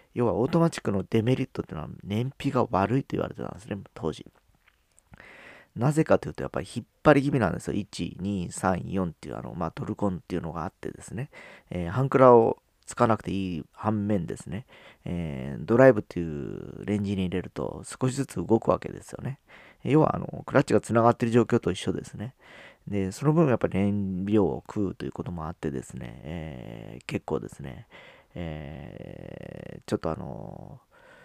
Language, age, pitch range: Japanese, 40-59, 90-125 Hz